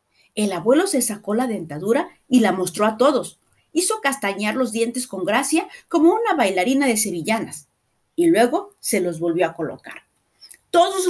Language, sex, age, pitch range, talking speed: Spanish, female, 40-59, 195-300 Hz, 160 wpm